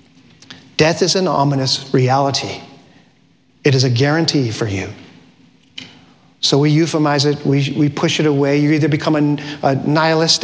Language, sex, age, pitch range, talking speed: English, male, 40-59, 130-160 Hz, 150 wpm